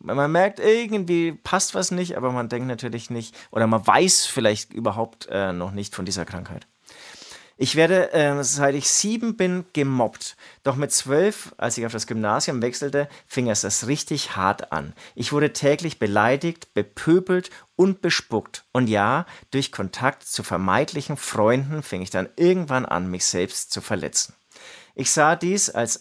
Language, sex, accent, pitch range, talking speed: German, male, German, 105-155 Hz, 165 wpm